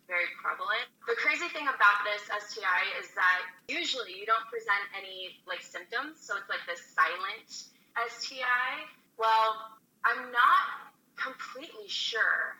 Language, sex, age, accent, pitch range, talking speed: English, female, 20-39, American, 180-235 Hz, 135 wpm